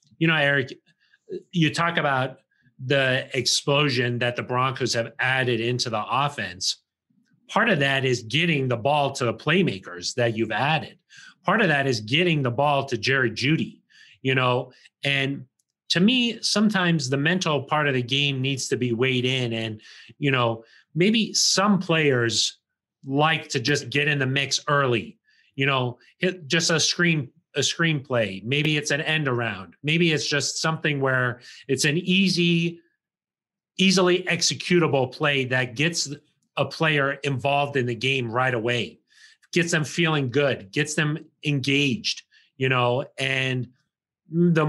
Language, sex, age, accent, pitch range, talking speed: English, male, 30-49, American, 130-170 Hz, 155 wpm